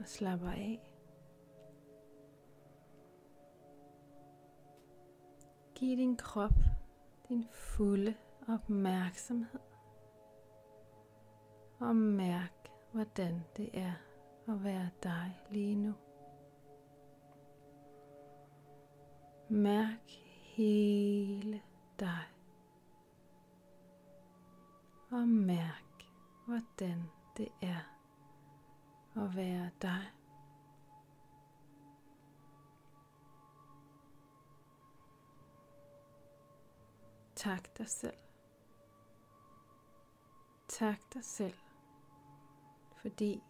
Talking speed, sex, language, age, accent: 50 wpm, female, Danish, 30-49, Swedish